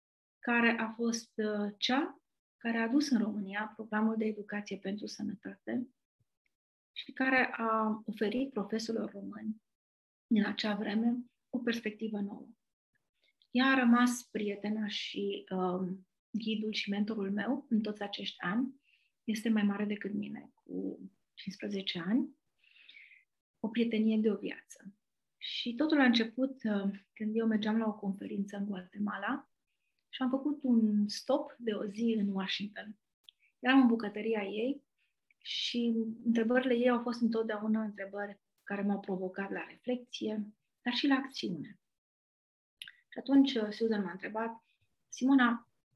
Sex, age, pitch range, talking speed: female, 30-49, 205-245 Hz, 135 wpm